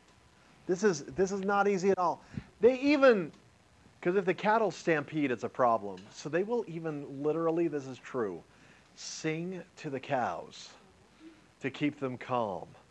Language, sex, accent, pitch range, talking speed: English, male, American, 115-160 Hz, 160 wpm